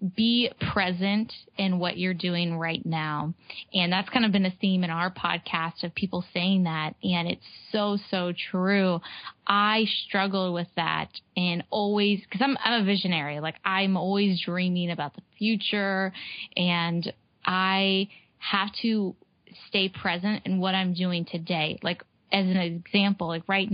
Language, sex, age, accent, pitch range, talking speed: English, female, 10-29, American, 175-195 Hz, 155 wpm